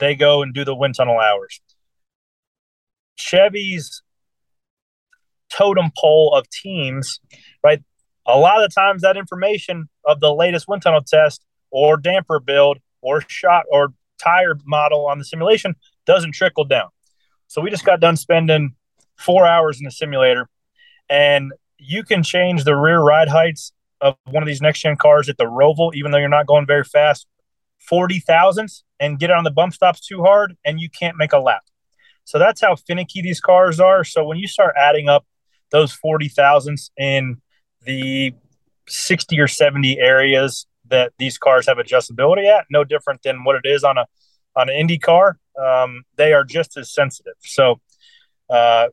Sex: male